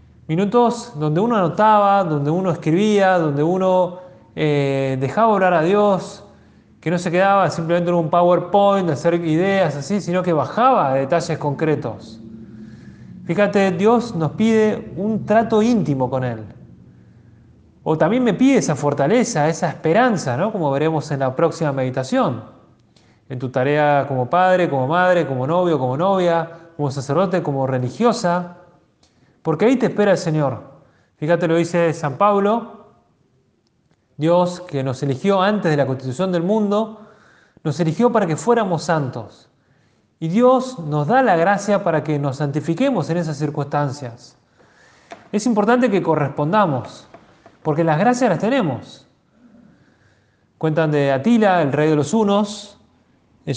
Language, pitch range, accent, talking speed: Spanish, 145-200 Hz, Argentinian, 145 wpm